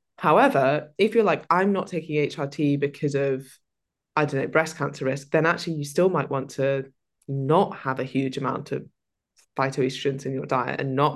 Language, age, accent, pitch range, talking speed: English, 10-29, British, 140-160 Hz, 190 wpm